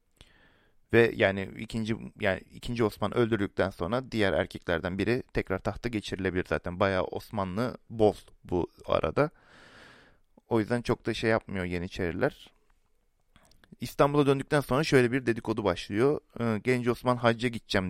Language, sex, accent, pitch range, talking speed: Turkish, male, native, 100-125 Hz, 125 wpm